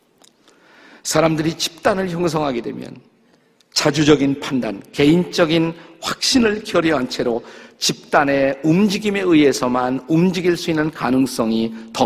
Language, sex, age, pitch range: Korean, male, 50-69, 125-165 Hz